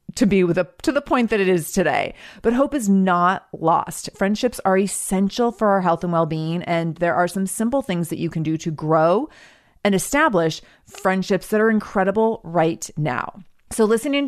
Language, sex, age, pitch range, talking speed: English, female, 30-49, 175-245 Hz, 200 wpm